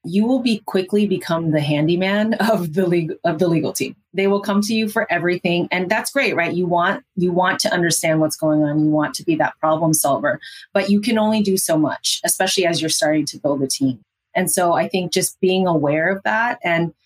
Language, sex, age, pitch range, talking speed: English, female, 30-49, 155-190 Hz, 230 wpm